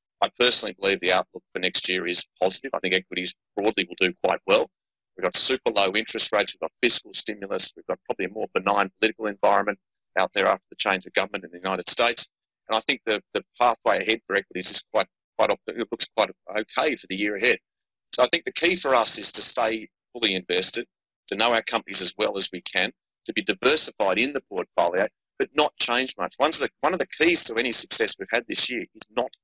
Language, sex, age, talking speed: English, male, 30-49, 230 wpm